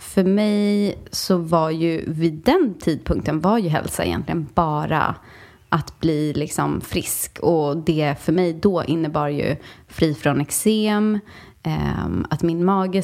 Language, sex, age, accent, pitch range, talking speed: English, female, 20-39, Swedish, 155-190 Hz, 145 wpm